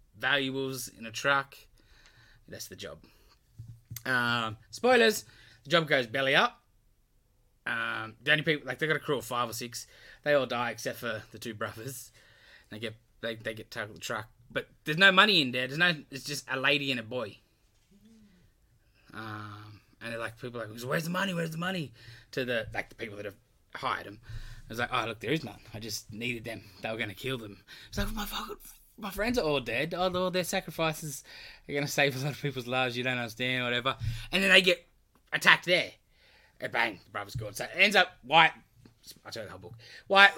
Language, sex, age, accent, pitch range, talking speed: English, male, 20-39, Australian, 110-150 Hz, 220 wpm